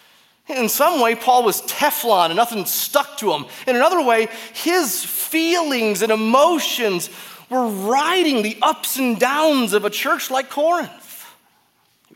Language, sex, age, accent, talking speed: English, male, 30-49, American, 150 wpm